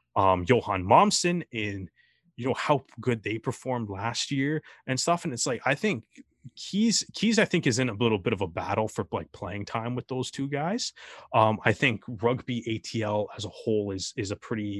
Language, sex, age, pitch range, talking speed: English, male, 20-39, 105-130 Hz, 205 wpm